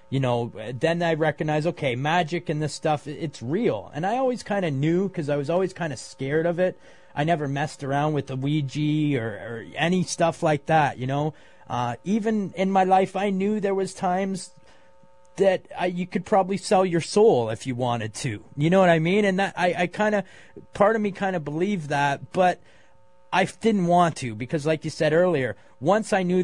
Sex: male